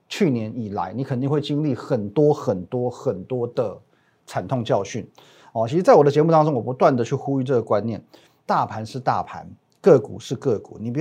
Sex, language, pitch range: male, Chinese, 125-160 Hz